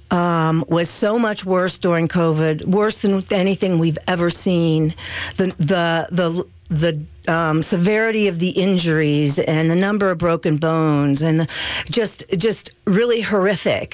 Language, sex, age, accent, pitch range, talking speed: English, female, 50-69, American, 165-210 Hz, 145 wpm